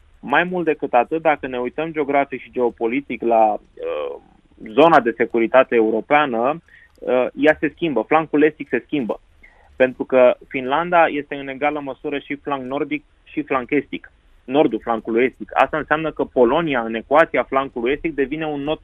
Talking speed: 160 wpm